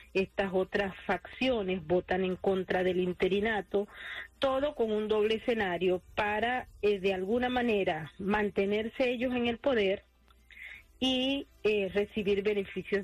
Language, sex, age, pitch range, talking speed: English, female, 40-59, 190-220 Hz, 125 wpm